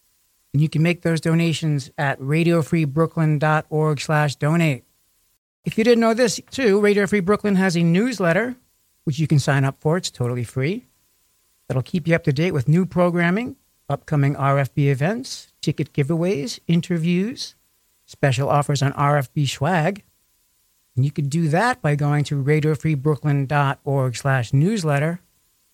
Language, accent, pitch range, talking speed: English, American, 140-175 Hz, 145 wpm